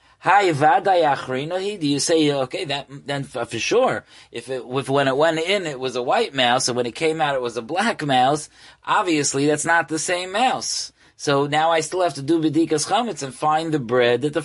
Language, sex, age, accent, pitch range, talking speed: English, male, 30-49, American, 125-165 Hz, 215 wpm